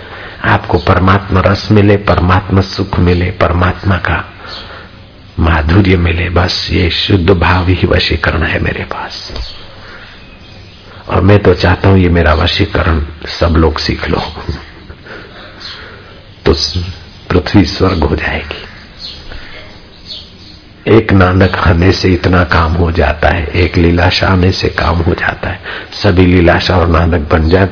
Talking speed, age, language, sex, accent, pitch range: 130 wpm, 60-79, Hindi, male, native, 85-100 Hz